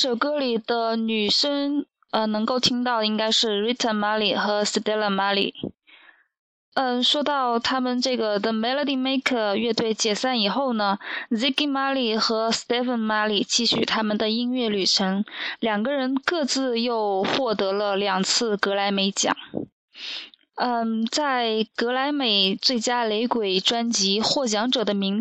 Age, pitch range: 20-39, 210-255 Hz